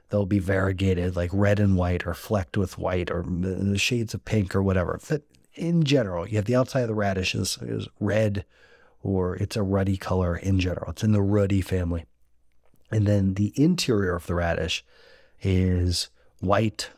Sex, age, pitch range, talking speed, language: male, 40-59, 95-110 Hz, 185 wpm, English